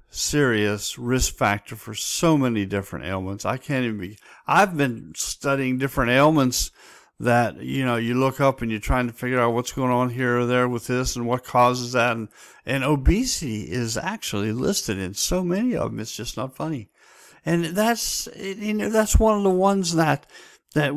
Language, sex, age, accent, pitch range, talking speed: English, male, 50-69, American, 120-145 Hz, 190 wpm